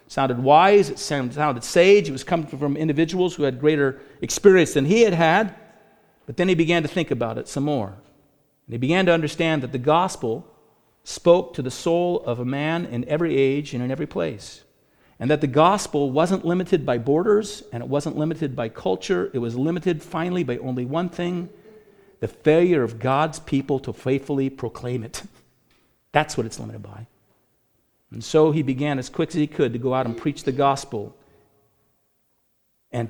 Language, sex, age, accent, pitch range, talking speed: English, male, 50-69, American, 125-165 Hz, 190 wpm